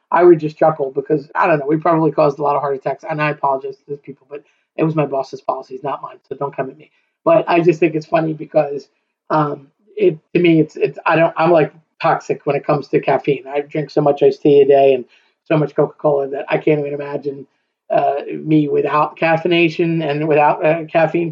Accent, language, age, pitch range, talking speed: American, English, 30-49, 150-190 Hz, 235 wpm